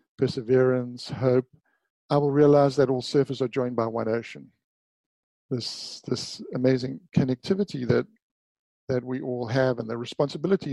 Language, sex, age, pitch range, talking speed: English, male, 50-69, 125-145 Hz, 140 wpm